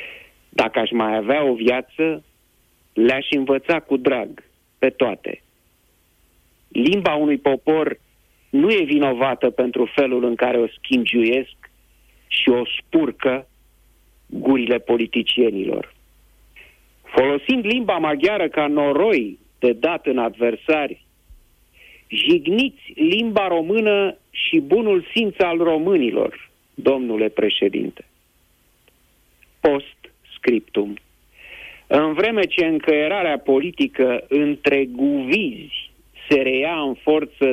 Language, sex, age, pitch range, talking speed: Romanian, male, 50-69, 125-185 Hz, 95 wpm